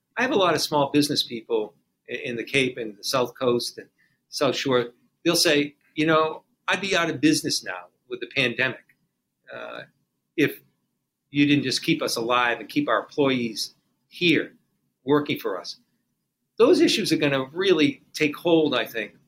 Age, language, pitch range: 50-69, English, 140-170 Hz